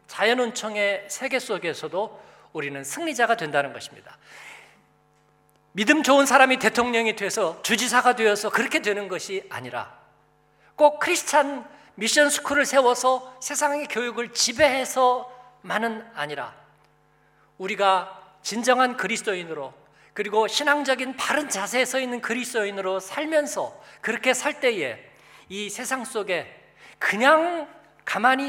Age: 50-69